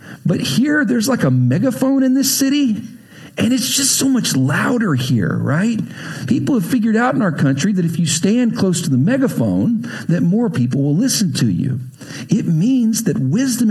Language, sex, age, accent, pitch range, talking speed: English, male, 50-69, American, 130-200 Hz, 190 wpm